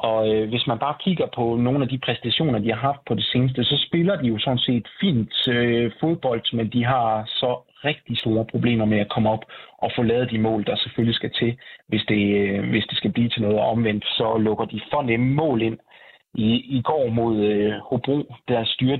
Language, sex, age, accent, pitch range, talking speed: Danish, male, 30-49, native, 110-125 Hz, 210 wpm